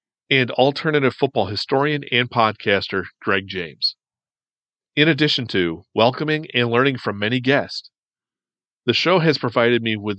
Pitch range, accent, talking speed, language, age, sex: 110-140 Hz, American, 135 wpm, English, 40-59, male